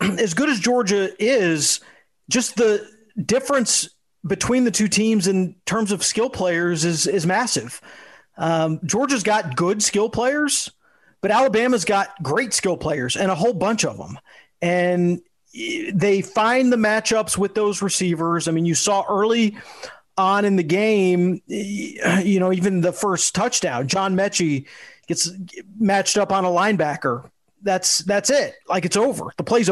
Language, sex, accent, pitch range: English, male, American, 180-220 Hz